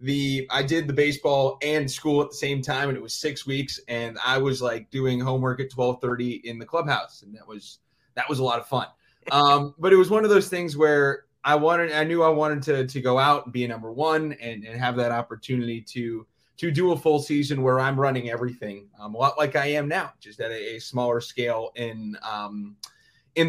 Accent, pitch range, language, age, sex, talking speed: American, 125-160 Hz, English, 20-39, male, 230 wpm